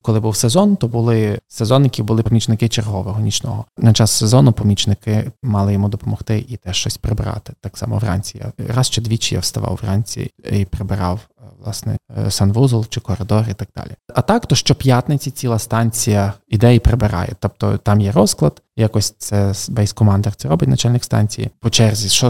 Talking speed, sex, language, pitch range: 170 wpm, male, Ukrainian, 105-125 Hz